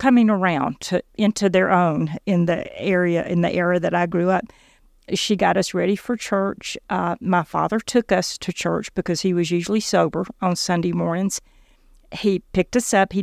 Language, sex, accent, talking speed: English, female, American, 190 wpm